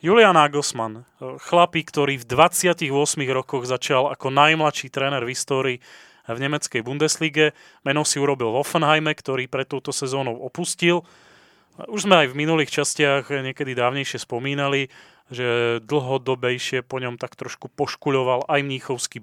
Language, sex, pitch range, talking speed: Slovak, male, 130-155 Hz, 135 wpm